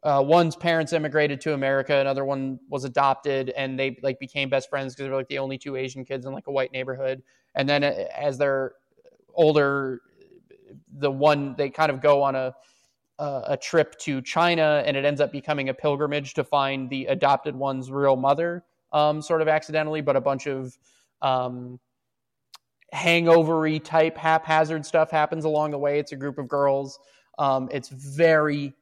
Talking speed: 185 wpm